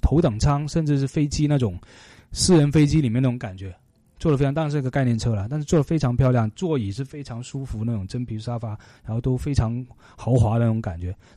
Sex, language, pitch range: male, Chinese, 115-150 Hz